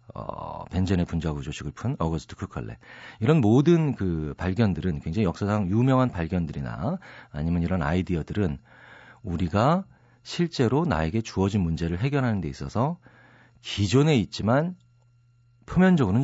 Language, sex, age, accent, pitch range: Korean, male, 40-59, native, 90-135 Hz